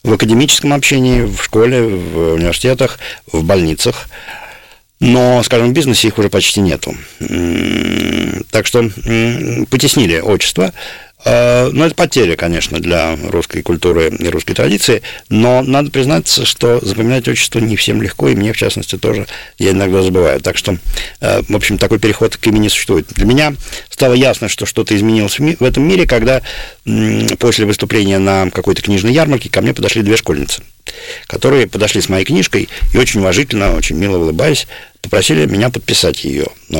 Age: 50-69